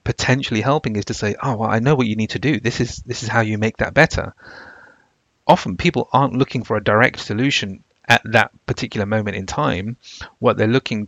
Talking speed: 215 wpm